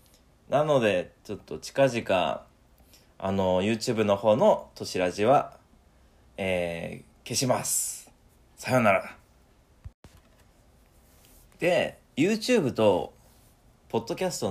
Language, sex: Japanese, male